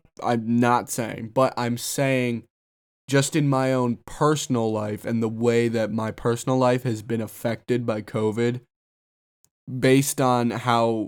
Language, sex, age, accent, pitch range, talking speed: English, male, 20-39, American, 110-130 Hz, 145 wpm